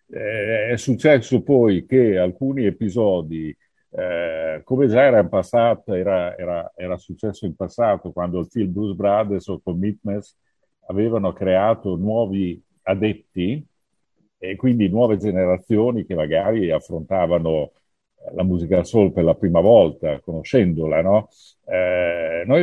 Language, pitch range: Italian, 90-120 Hz